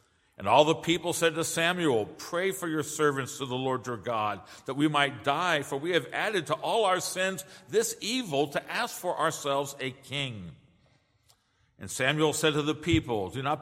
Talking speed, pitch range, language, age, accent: 195 wpm, 125-170 Hz, English, 60-79, American